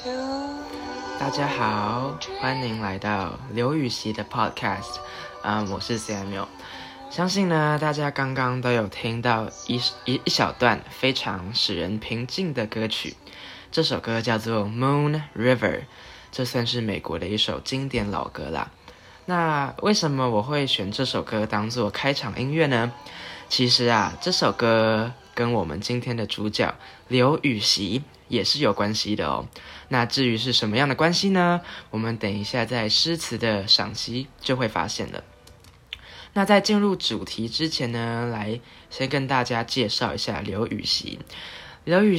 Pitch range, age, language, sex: 105-145 Hz, 10-29, Chinese, male